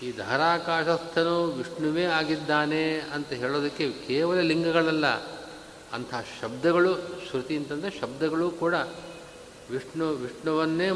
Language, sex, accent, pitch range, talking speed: Kannada, male, native, 145-170 Hz, 90 wpm